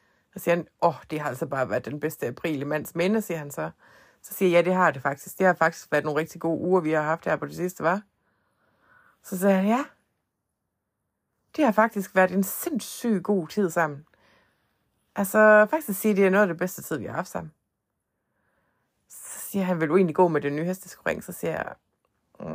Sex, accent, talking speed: female, native, 225 wpm